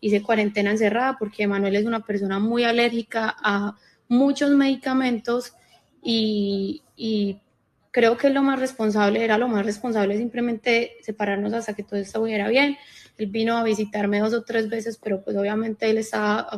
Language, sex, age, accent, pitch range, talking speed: Spanish, female, 20-39, Colombian, 210-245 Hz, 160 wpm